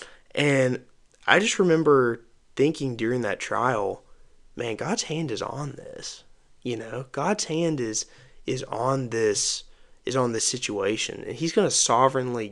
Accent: American